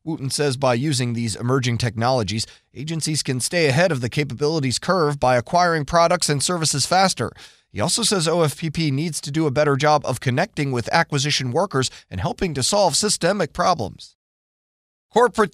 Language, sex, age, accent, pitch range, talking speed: English, male, 30-49, American, 125-175 Hz, 165 wpm